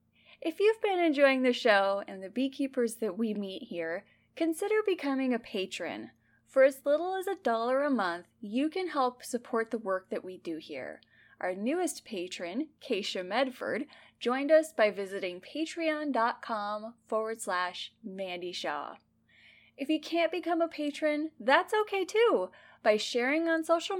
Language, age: English, 10-29